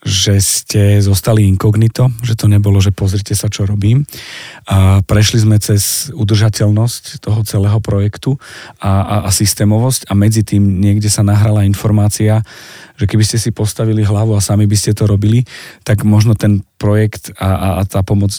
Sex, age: male, 40-59